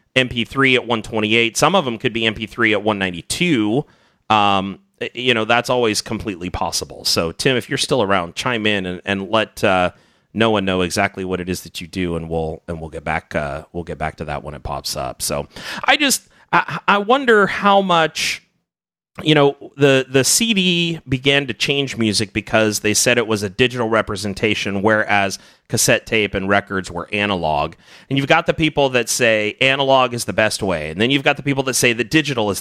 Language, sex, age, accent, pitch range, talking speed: English, male, 30-49, American, 105-140 Hz, 205 wpm